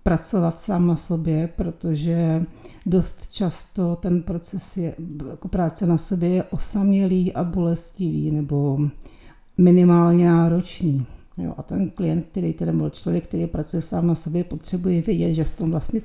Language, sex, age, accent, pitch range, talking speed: Czech, female, 60-79, native, 160-180 Hz, 150 wpm